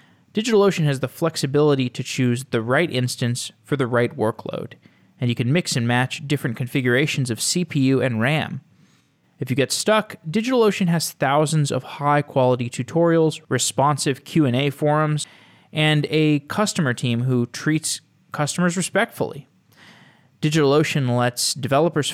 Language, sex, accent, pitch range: English, male, American, 130-165 Hz